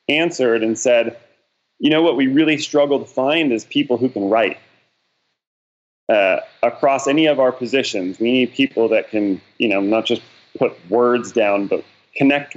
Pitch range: 105-125 Hz